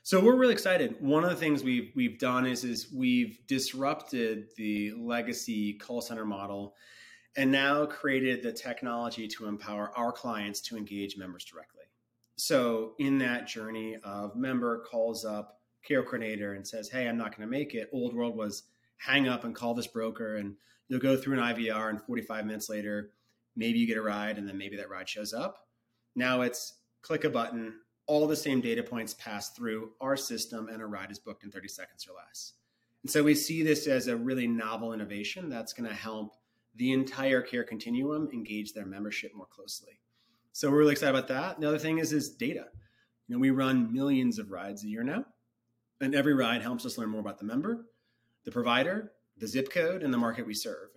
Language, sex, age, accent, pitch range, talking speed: English, male, 30-49, American, 110-135 Hz, 200 wpm